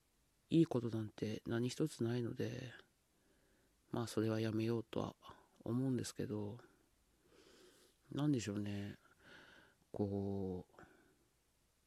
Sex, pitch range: male, 100-125 Hz